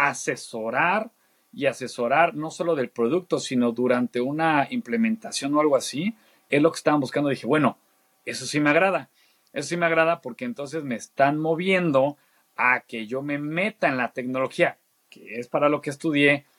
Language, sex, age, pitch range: Spanish, male, 40-59, 135-170 Hz